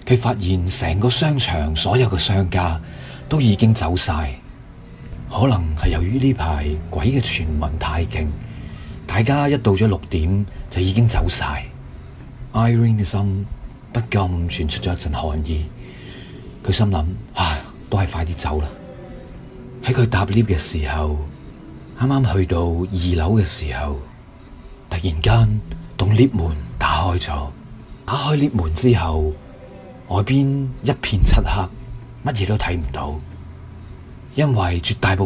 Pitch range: 85-125 Hz